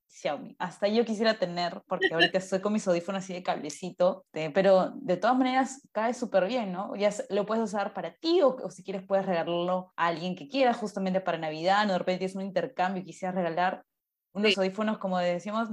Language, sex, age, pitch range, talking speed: Spanish, female, 20-39, 185-235 Hz, 210 wpm